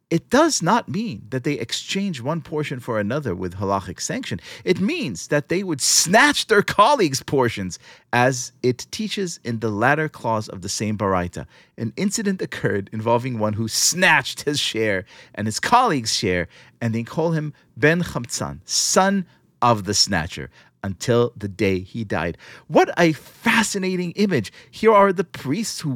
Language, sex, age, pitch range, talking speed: English, male, 40-59, 115-180 Hz, 165 wpm